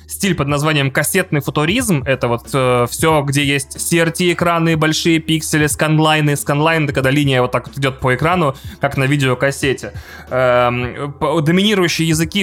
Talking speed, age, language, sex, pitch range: 155 wpm, 20-39, Russian, male, 130-165 Hz